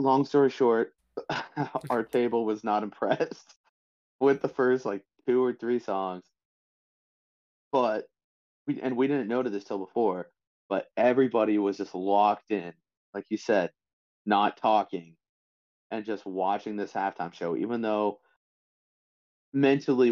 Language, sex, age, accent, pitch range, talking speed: English, male, 30-49, American, 95-115 Hz, 135 wpm